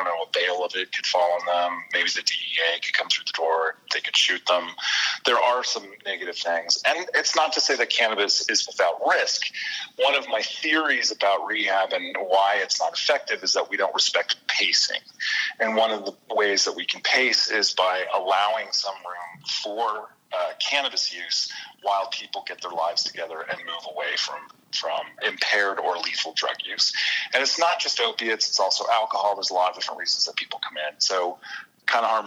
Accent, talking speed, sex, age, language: American, 205 wpm, male, 30-49, English